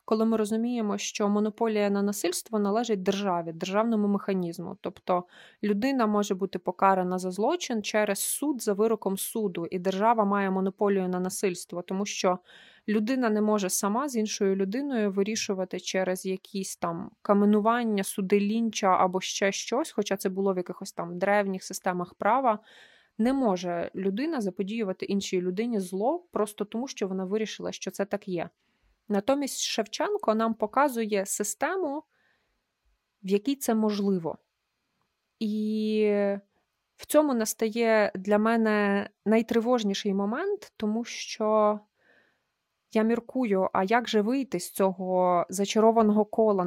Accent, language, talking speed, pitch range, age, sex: native, Ukrainian, 130 wpm, 195-225 Hz, 20-39, female